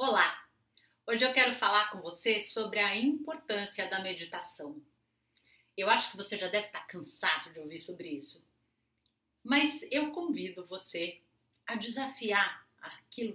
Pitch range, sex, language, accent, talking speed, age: 175-235 Hz, female, Portuguese, Brazilian, 140 wpm, 30-49